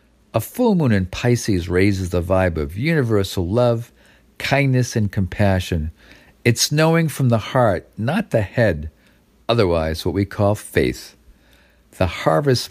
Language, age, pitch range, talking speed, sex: English, 50-69, 90-125 Hz, 135 wpm, male